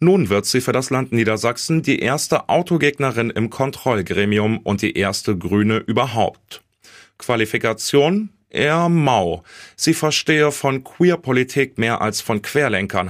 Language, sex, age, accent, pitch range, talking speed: German, male, 30-49, German, 105-140 Hz, 130 wpm